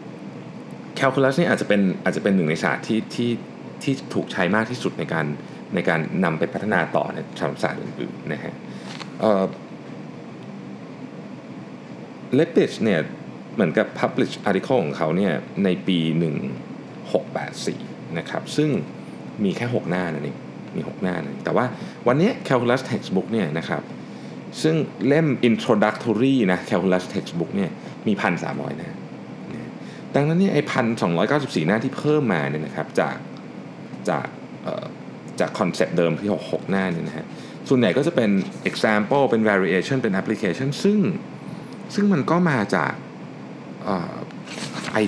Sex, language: male, Thai